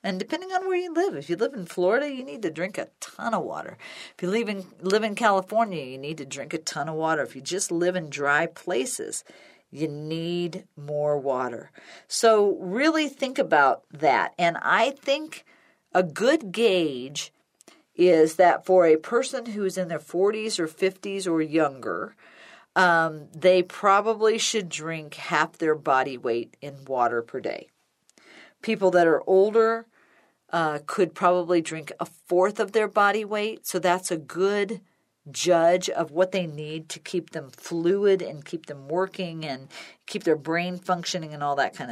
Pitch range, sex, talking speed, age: 160-205 Hz, female, 175 wpm, 50-69